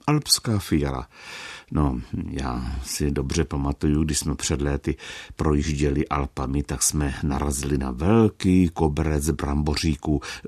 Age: 60-79